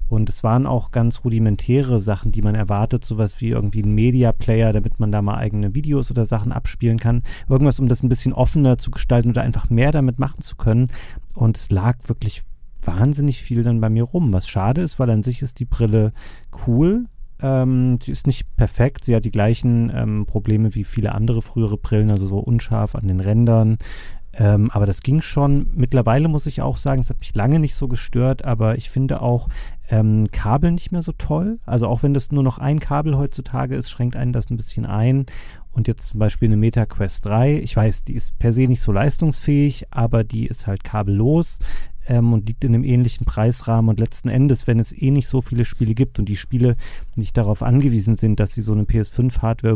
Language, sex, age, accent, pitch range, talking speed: German, male, 40-59, German, 110-125 Hz, 210 wpm